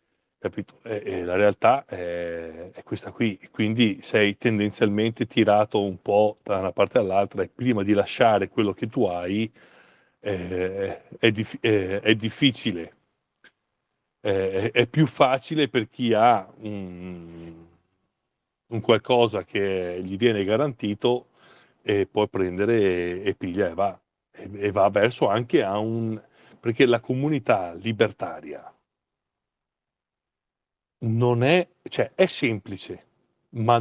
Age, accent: 40-59, native